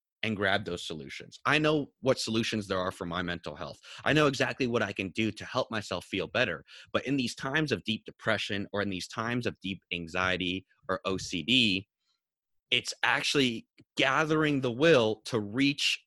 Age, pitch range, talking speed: 30-49, 95-125 Hz, 185 wpm